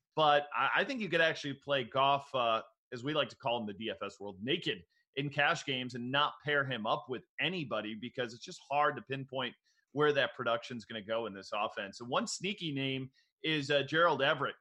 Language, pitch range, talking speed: English, 125-155 Hz, 220 wpm